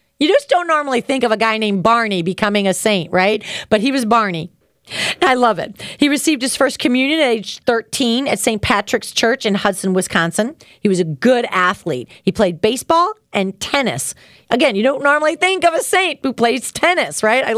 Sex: female